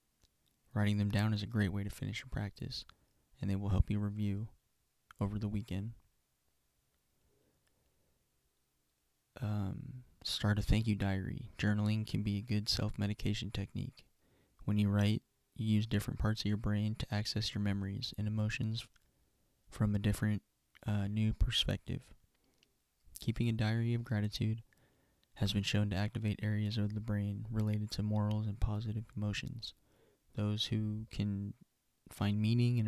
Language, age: English, 20-39